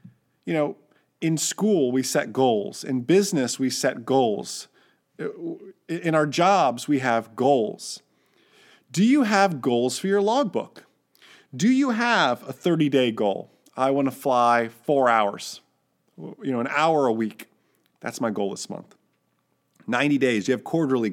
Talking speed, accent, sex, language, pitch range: 150 wpm, American, male, English, 125-170 Hz